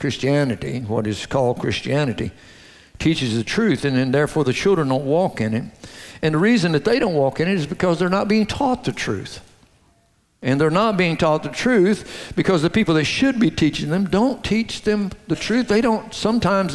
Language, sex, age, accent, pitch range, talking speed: English, male, 60-79, American, 125-185 Hz, 205 wpm